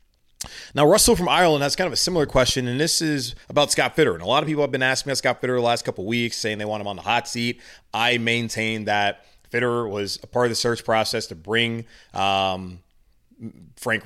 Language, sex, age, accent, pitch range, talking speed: English, male, 30-49, American, 105-130 Hz, 230 wpm